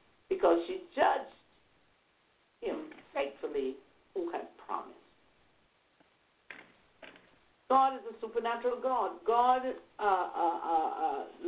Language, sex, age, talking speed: English, female, 60-79, 90 wpm